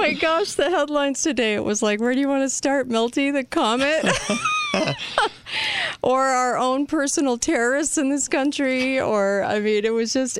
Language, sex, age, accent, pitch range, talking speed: English, female, 40-59, American, 165-210 Hz, 180 wpm